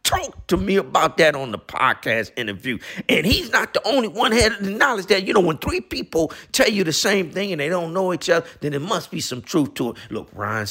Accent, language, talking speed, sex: American, English, 260 wpm, male